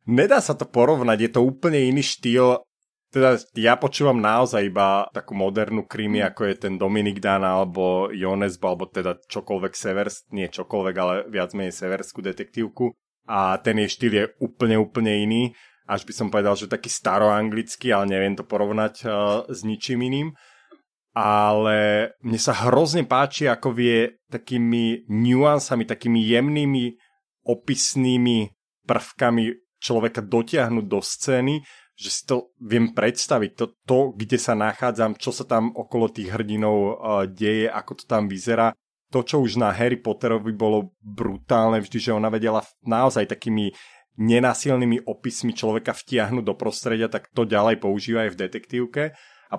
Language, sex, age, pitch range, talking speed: Slovak, male, 30-49, 105-125 Hz, 150 wpm